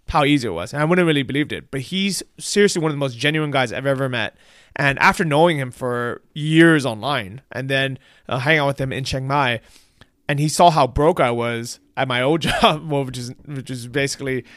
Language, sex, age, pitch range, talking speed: English, male, 20-39, 125-160 Hz, 235 wpm